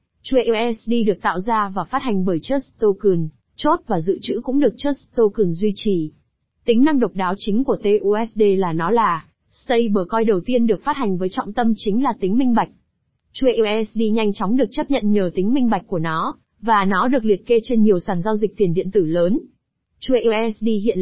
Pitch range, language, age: 200-240 Hz, Vietnamese, 20-39